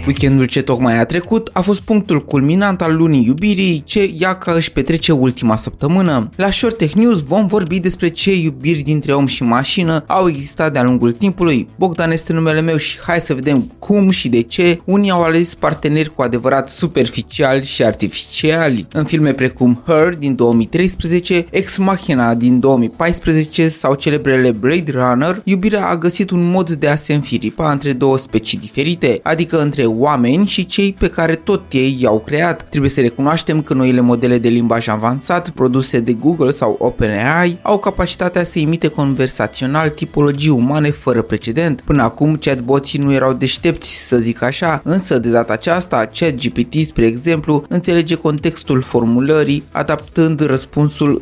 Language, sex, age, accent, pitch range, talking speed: Romanian, male, 20-39, native, 130-170 Hz, 165 wpm